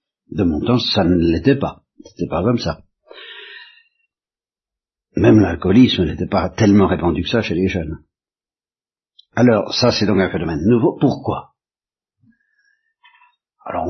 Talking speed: 135 wpm